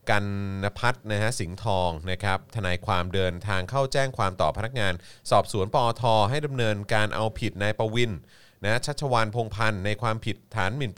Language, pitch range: Thai, 100-130 Hz